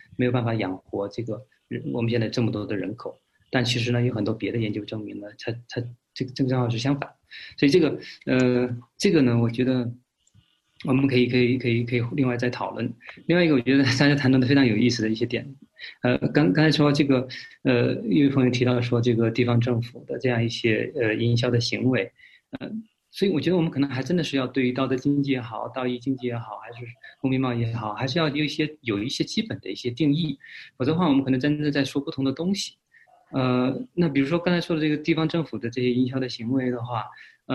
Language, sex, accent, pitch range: Chinese, male, native, 120-145 Hz